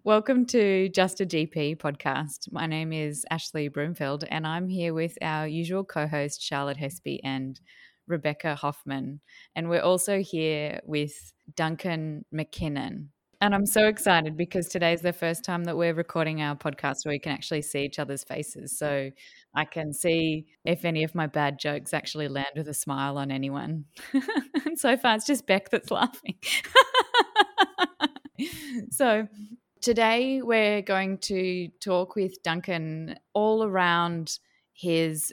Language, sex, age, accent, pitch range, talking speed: English, female, 20-39, Australian, 150-185 Hz, 150 wpm